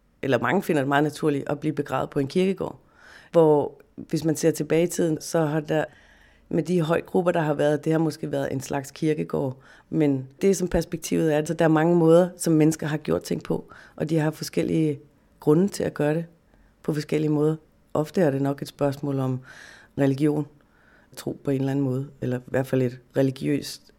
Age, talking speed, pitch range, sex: 30-49, 210 wpm, 140-160 Hz, female